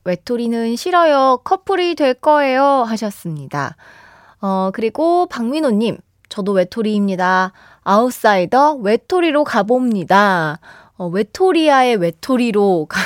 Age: 20-39